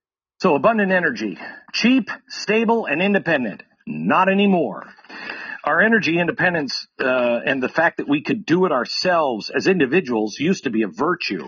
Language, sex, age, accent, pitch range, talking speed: English, male, 50-69, American, 160-225 Hz, 150 wpm